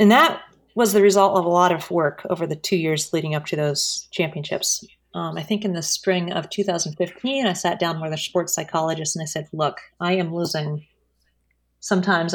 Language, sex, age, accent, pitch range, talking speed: English, female, 30-49, American, 160-195 Hz, 205 wpm